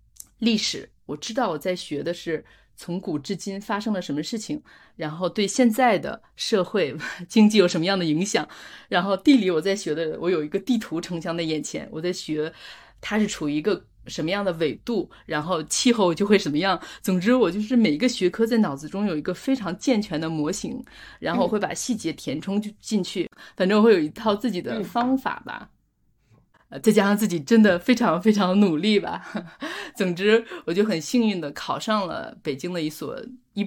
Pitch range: 170-225 Hz